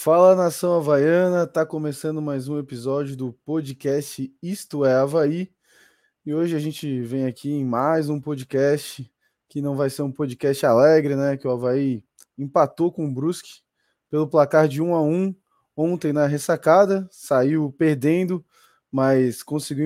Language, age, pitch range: Portuguese, 20-39, 140-165 Hz